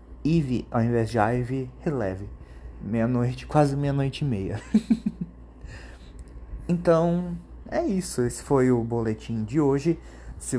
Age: 30-49